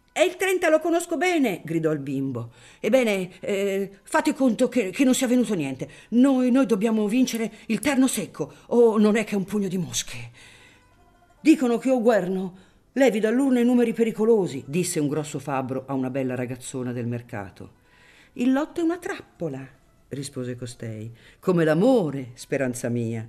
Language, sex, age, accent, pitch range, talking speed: Italian, female, 50-69, native, 135-215 Hz, 175 wpm